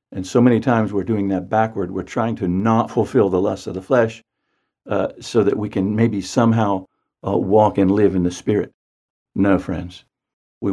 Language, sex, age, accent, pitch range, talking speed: English, male, 50-69, American, 95-110 Hz, 195 wpm